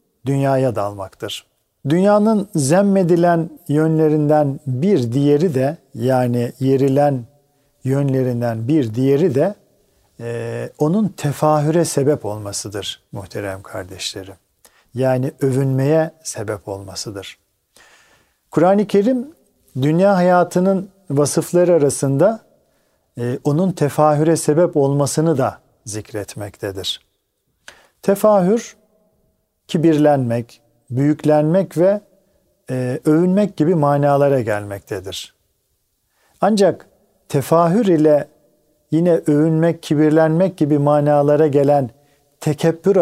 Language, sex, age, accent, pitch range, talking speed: Turkish, male, 50-69, native, 125-170 Hz, 80 wpm